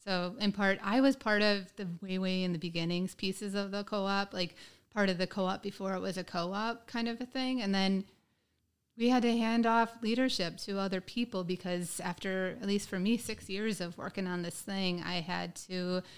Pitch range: 180-215 Hz